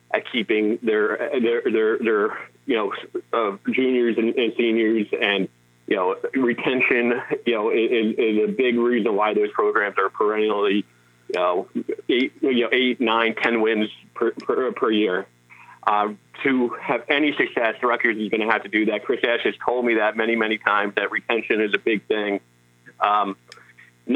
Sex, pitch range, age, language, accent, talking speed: male, 105-160 Hz, 30-49, English, American, 175 wpm